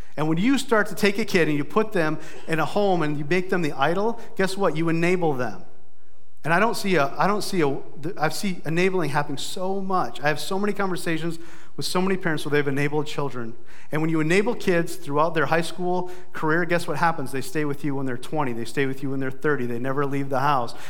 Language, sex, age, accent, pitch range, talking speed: English, male, 40-59, American, 145-180 Hz, 245 wpm